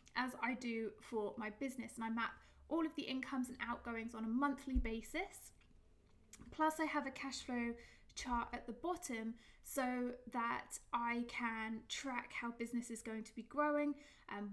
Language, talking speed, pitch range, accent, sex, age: English, 175 wpm, 230-275 Hz, British, female, 20-39